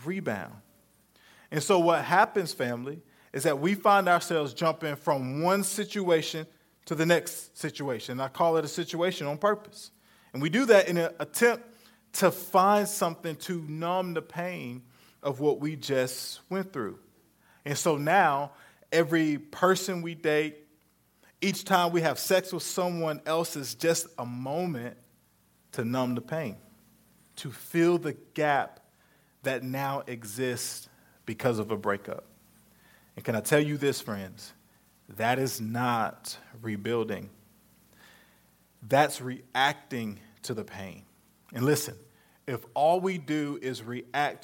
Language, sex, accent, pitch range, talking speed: English, male, American, 125-170 Hz, 140 wpm